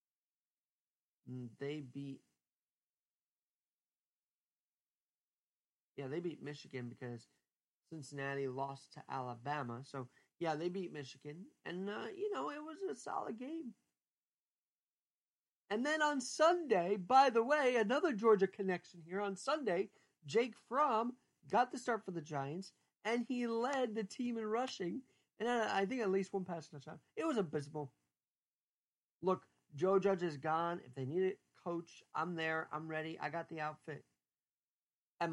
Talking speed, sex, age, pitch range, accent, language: 140 wpm, male, 40-59, 140-205 Hz, American, English